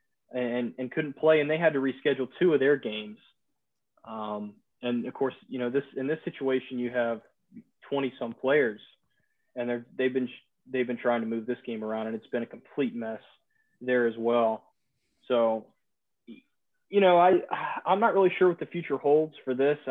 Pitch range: 120-145 Hz